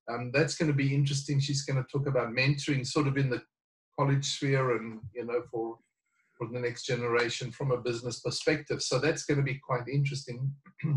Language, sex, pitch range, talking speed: English, male, 125-155 Hz, 200 wpm